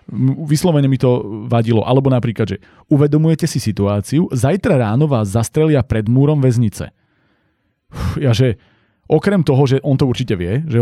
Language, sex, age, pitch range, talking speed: Slovak, male, 30-49, 110-140 Hz, 145 wpm